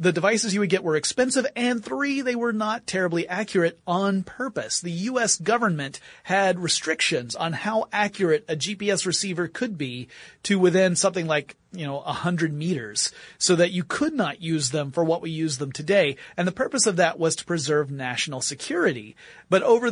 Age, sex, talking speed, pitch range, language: 30-49, male, 190 wpm, 155-220 Hz, English